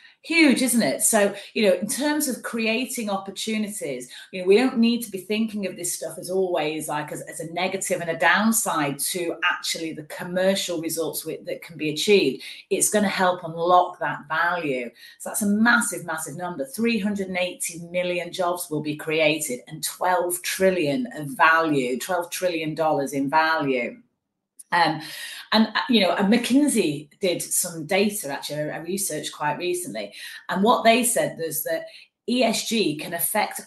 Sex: female